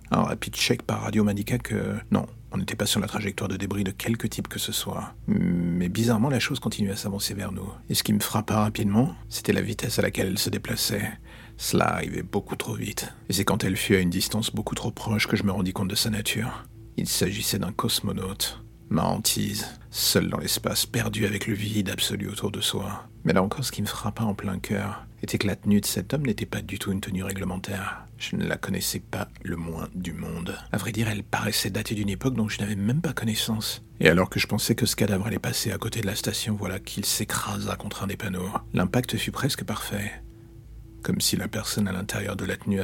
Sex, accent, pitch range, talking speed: male, French, 100-110 Hz, 235 wpm